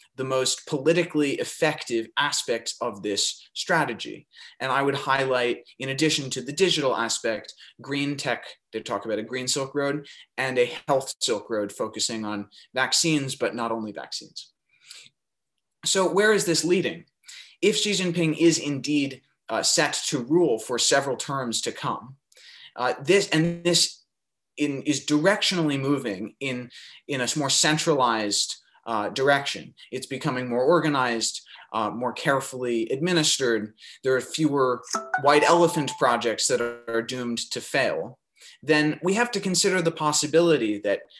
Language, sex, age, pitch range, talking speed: English, male, 20-39, 120-160 Hz, 145 wpm